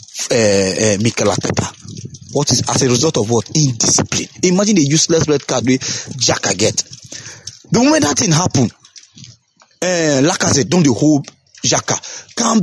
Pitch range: 130-195 Hz